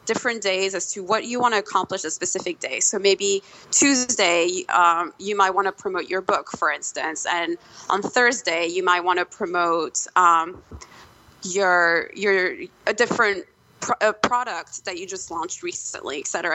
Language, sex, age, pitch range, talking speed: English, female, 20-39, 185-230 Hz, 175 wpm